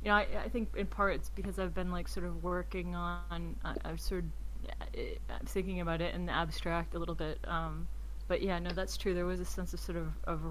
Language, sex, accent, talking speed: English, female, American, 255 wpm